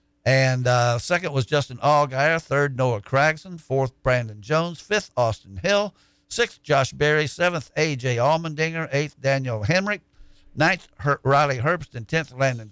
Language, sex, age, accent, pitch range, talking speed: English, male, 60-79, American, 120-160 Hz, 140 wpm